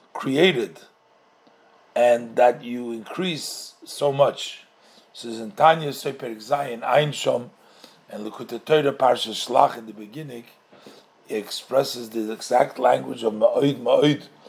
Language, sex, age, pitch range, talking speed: English, male, 50-69, 125-180 Hz, 90 wpm